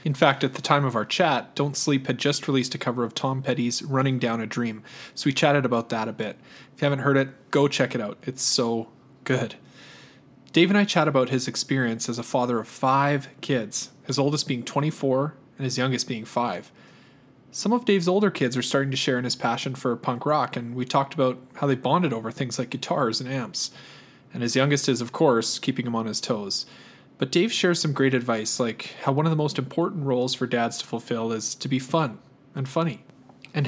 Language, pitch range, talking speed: English, 120-145 Hz, 225 wpm